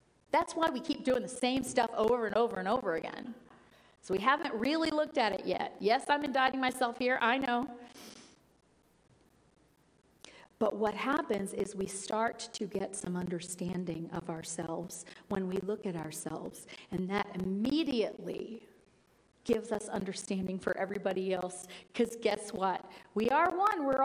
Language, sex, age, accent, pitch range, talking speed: English, female, 40-59, American, 200-255 Hz, 155 wpm